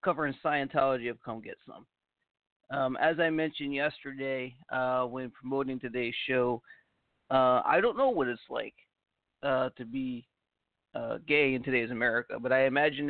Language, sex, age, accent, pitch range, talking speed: English, male, 40-59, American, 125-150 Hz, 155 wpm